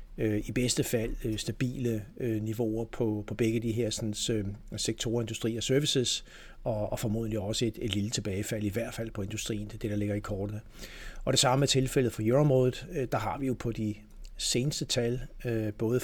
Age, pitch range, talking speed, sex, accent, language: 60-79, 105-120 Hz, 175 wpm, male, native, Danish